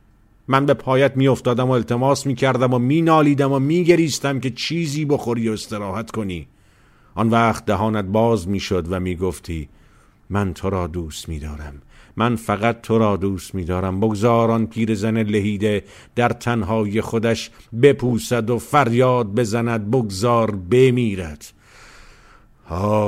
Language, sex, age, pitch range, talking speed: Persian, male, 50-69, 90-115 Hz, 135 wpm